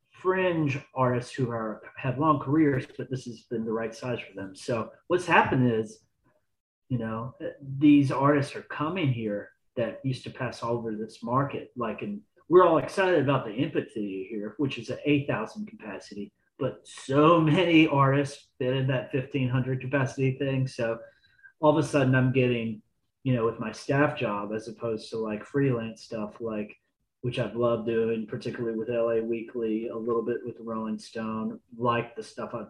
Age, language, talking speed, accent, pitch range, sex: 30-49, English, 180 wpm, American, 110-135 Hz, male